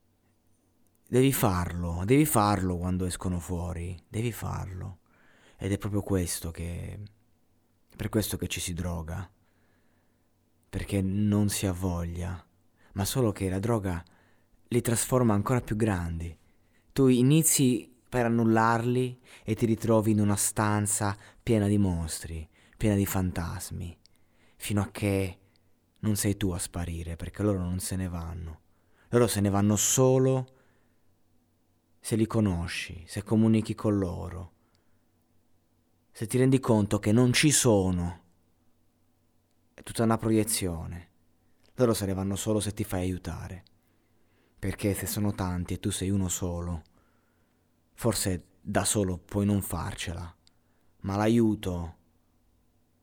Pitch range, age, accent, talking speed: 85-110 Hz, 30-49, native, 130 wpm